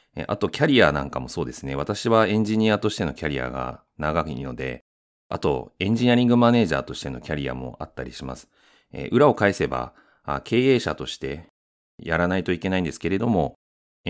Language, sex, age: Japanese, male, 30-49